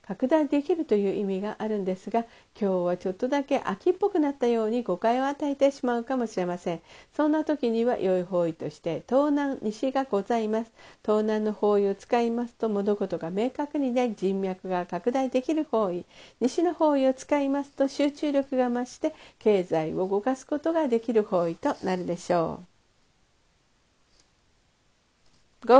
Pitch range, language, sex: 195-275 Hz, Japanese, female